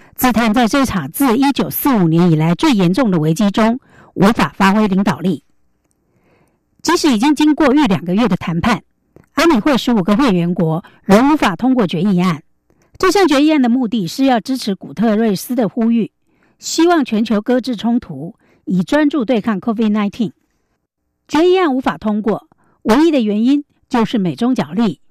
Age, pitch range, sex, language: 60-79, 195-265 Hz, female, German